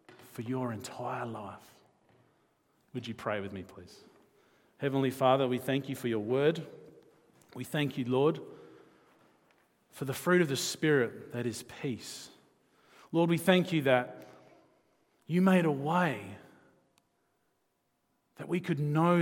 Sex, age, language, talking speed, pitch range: male, 40-59, English, 135 wpm, 130-190 Hz